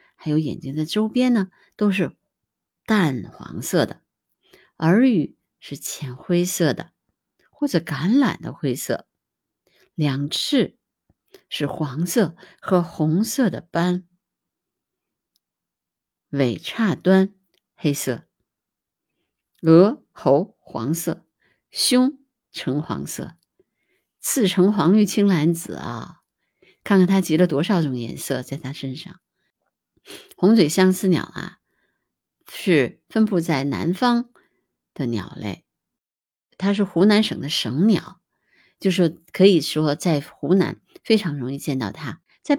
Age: 50-69